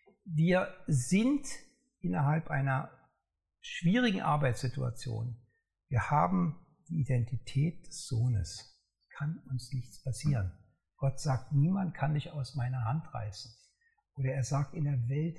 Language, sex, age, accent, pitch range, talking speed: German, male, 60-79, German, 125-160 Hz, 120 wpm